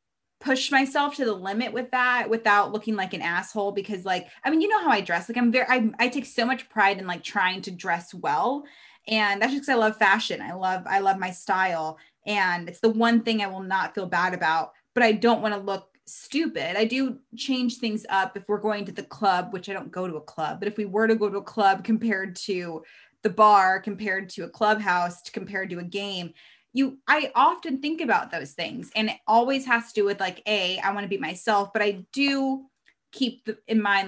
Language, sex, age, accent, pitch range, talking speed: English, female, 20-39, American, 190-240 Hz, 235 wpm